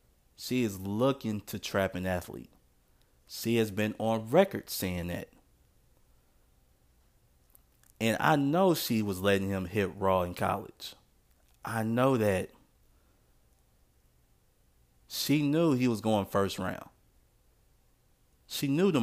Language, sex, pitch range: English, male, 90-120 Hz